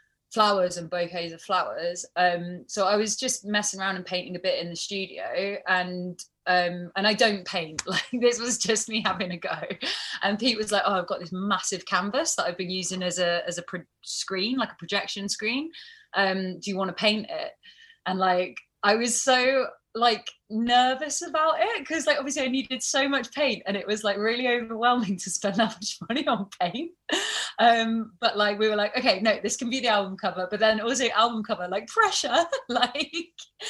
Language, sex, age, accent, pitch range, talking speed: English, female, 20-39, British, 200-265 Hz, 205 wpm